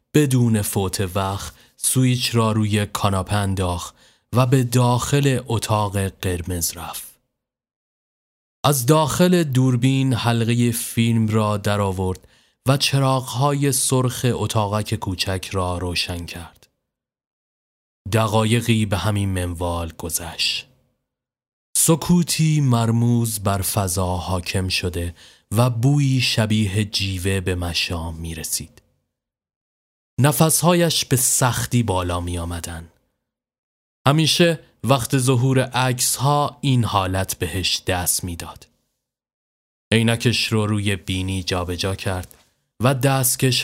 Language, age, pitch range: Persian, 30-49, 95-130 Hz